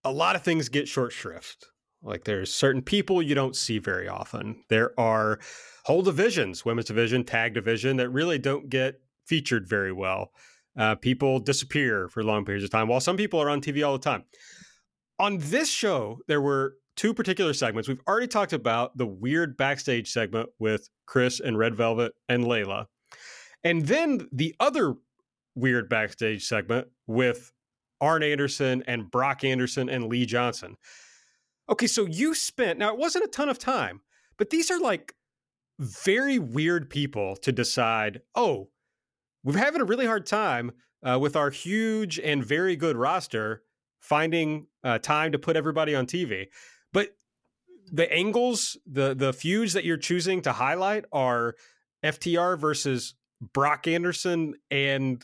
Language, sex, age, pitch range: English, male, 30-49, 120-170 Hz